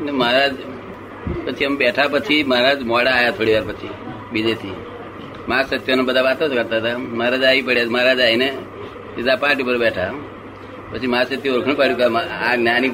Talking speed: 55 wpm